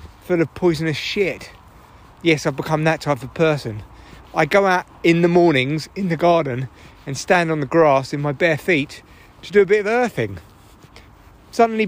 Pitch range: 135-200 Hz